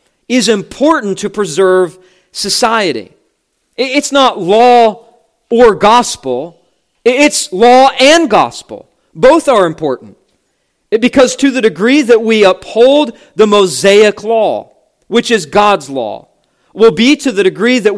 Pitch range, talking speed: 200-285 Hz, 125 wpm